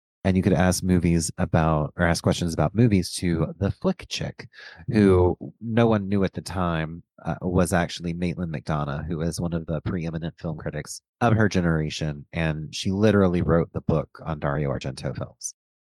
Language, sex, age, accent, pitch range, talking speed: English, male, 30-49, American, 75-95 Hz, 180 wpm